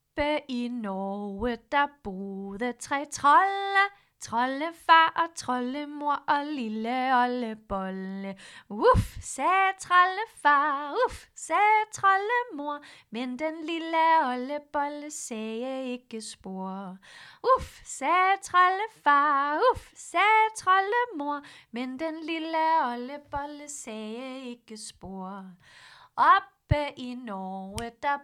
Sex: female